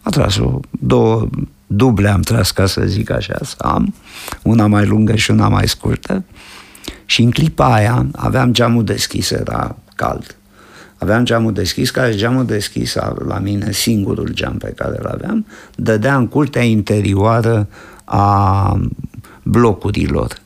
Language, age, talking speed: Romanian, 50-69, 140 wpm